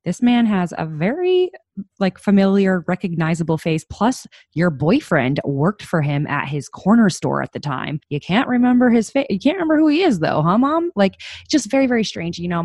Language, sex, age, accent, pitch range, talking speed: English, female, 20-39, American, 140-195 Hz, 205 wpm